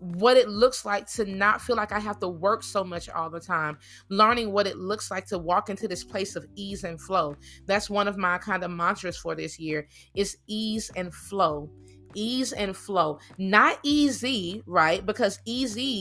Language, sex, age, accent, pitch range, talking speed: English, female, 30-49, American, 180-230 Hz, 200 wpm